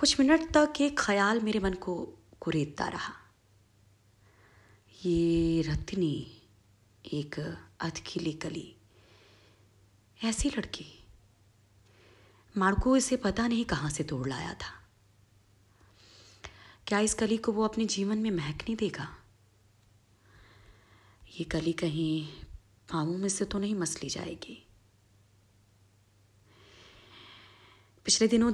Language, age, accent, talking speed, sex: Hindi, 20-39, native, 105 wpm, female